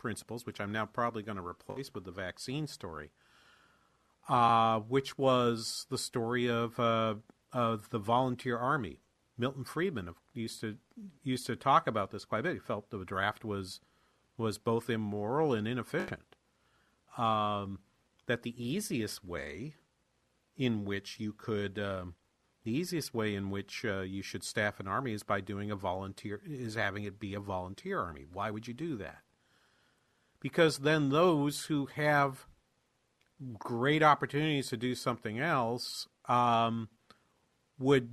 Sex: male